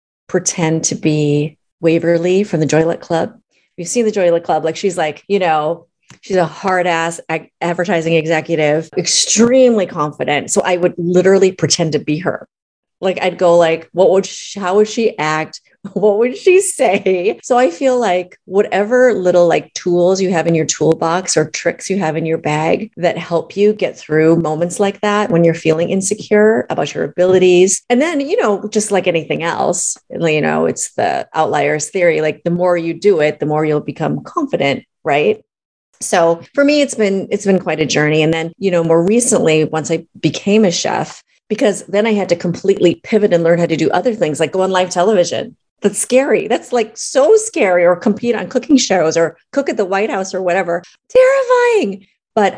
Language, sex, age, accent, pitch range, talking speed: English, female, 30-49, American, 160-200 Hz, 195 wpm